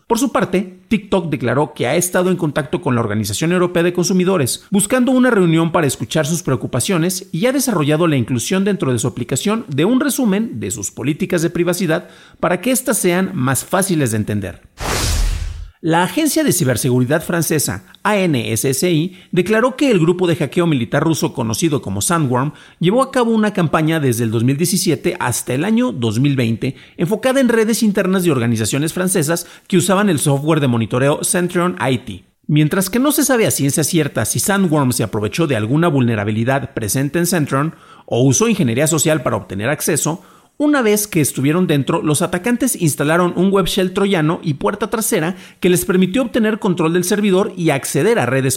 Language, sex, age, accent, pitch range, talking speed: Spanish, male, 40-59, Mexican, 135-190 Hz, 175 wpm